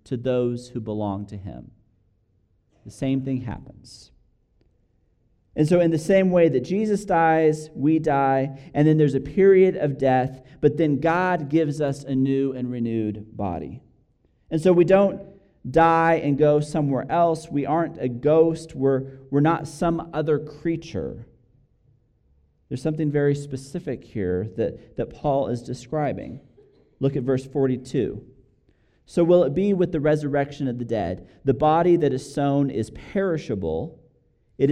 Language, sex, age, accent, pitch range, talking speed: English, male, 40-59, American, 125-160 Hz, 155 wpm